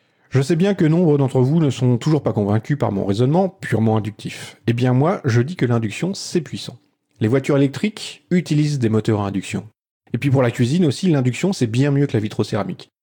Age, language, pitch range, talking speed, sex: 40-59, French, 110-145 Hz, 215 wpm, male